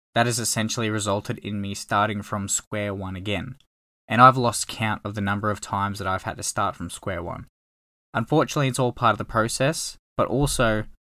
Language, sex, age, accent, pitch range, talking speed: English, male, 10-29, Australian, 100-120 Hz, 200 wpm